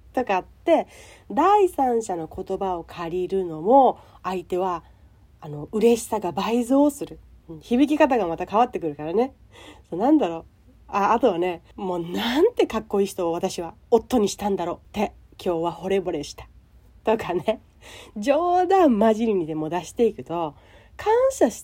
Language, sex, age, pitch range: Japanese, female, 40-59, 175-250 Hz